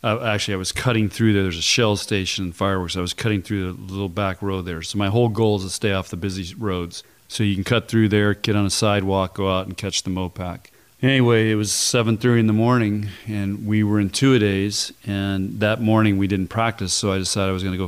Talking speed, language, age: 255 wpm, English, 40-59